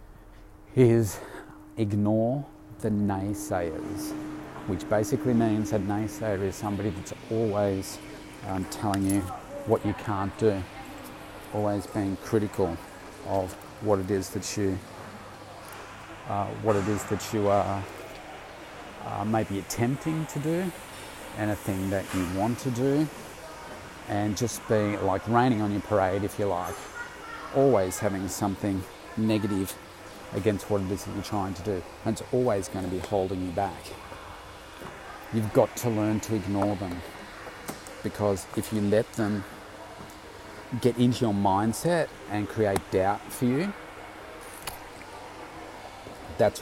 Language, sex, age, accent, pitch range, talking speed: English, male, 40-59, Australian, 100-110 Hz, 135 wpm